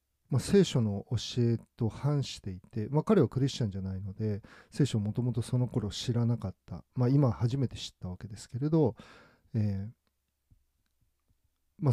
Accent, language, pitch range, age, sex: native, Japanese, 90-125 Hz, 40-59, male